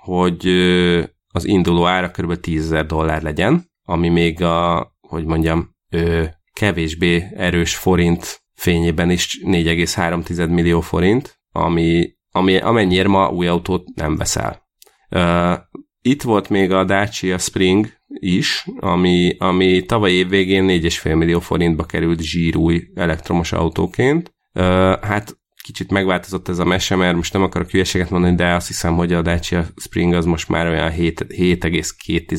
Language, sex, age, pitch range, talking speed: Hungarian, male, 30-49, 85-95 Hz, 130 wpm